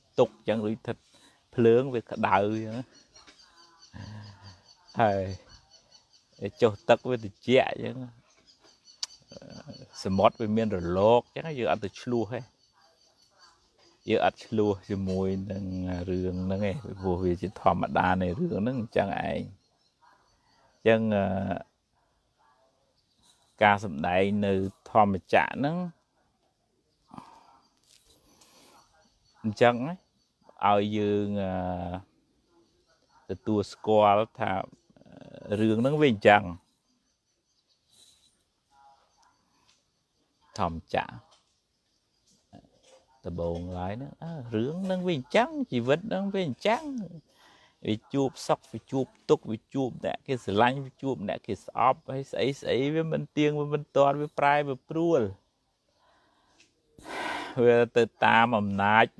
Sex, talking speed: male, 70 wpm